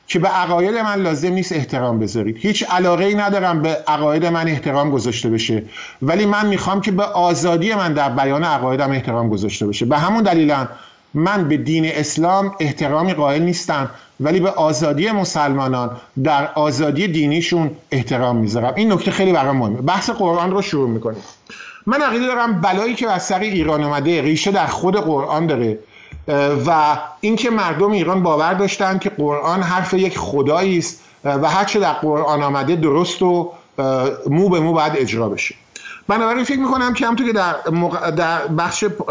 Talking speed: 165 wpm